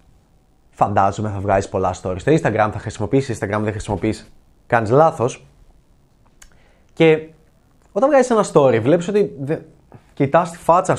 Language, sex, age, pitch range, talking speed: Greek, male, 20-39, 120-175 Hz, 140 wpm